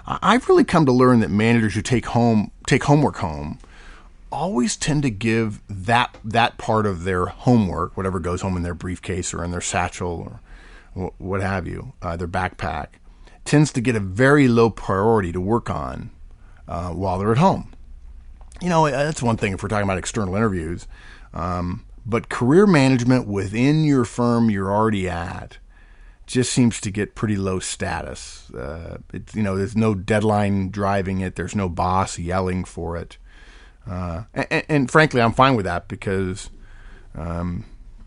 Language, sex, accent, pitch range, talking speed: English, male, American, 90-115 Hz, 170 wpm